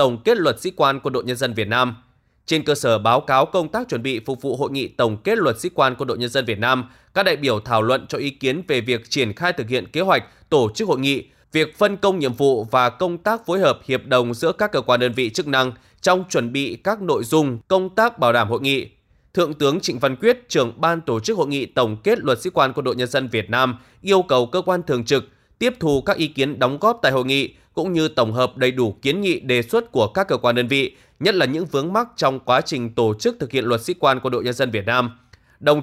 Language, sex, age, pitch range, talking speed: Vietnamese, male, 20-39, 125-165 Hz, 275 wpm